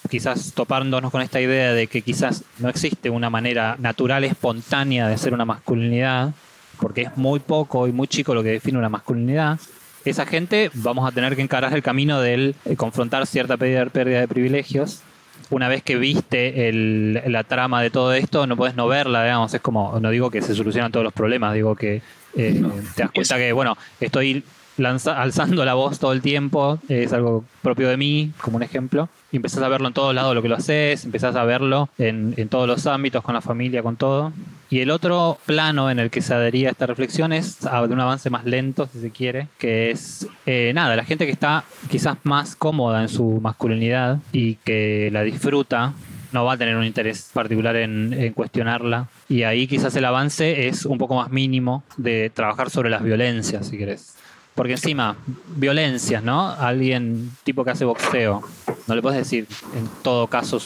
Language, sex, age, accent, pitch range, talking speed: Spanish, male, 20-39, Argentinian, 115-135 Hz, 195 wpm